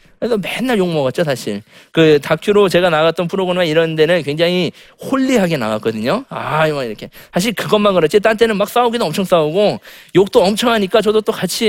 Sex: male